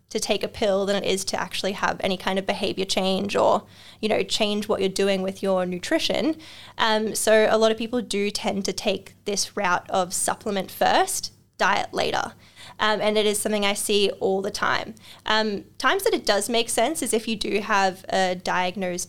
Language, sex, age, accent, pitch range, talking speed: English, female, 10-29, Australian, 200-230 Hz, 205 wpm